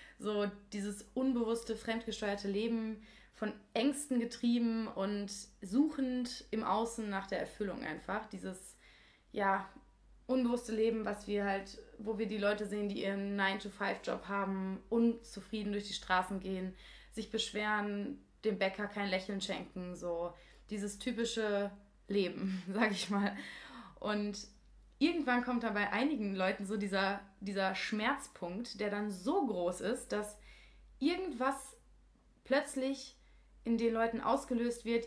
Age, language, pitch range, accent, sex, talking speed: 20-39, German, 200-235 Hz, German, female, 130 wpm